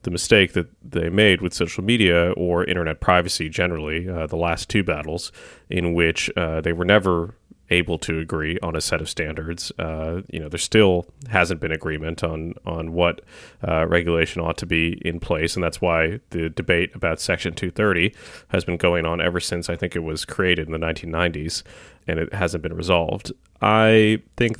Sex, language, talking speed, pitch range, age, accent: male, English, 190 wpm, 85-95 Hz, 30-49, American